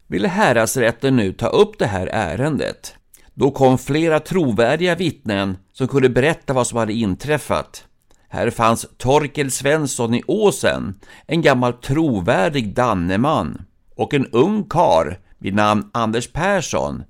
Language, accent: Swedish, native